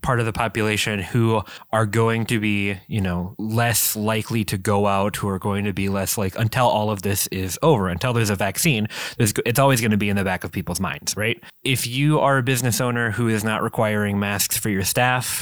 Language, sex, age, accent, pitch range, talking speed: English, male, 20-39, American, 100-115 Hz, 230 wpm